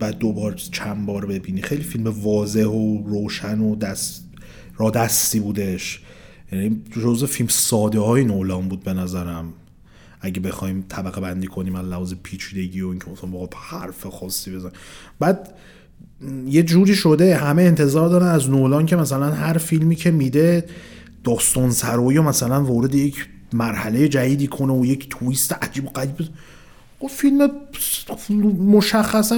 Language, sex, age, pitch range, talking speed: Persian, male, 30-49, 115-185 Hz, 140 wpm